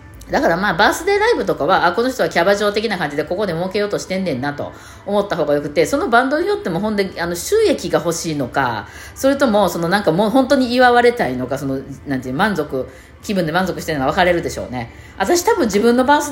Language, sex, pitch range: Japanese, female, 160-250 Hz